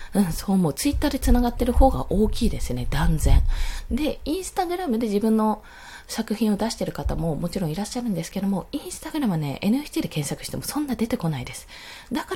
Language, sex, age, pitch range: Japanese, female, 20-39, 180-260 Hz